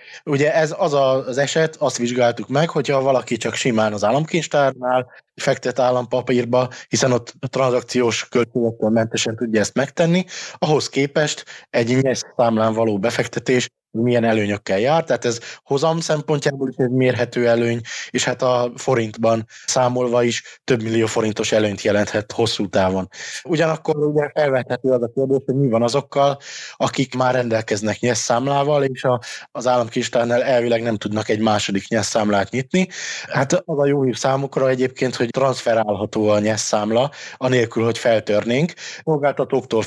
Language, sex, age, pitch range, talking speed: Hungarian, male, 20-39, 115-135 Hz, 140 wpm